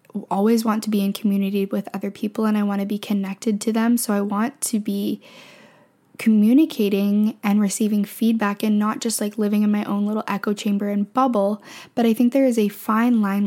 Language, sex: English, female